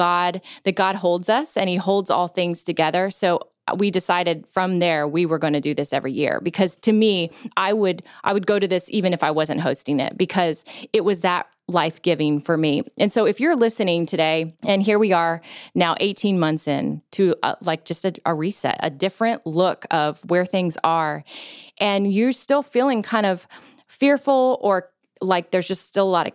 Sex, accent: female, American